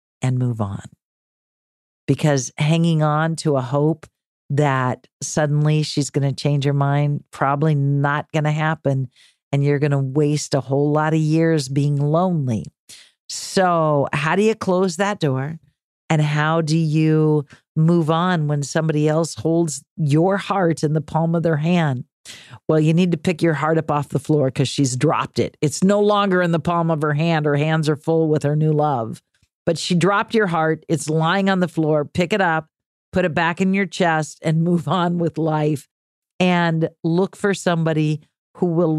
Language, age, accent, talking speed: English, 50-69, American, 185 wpm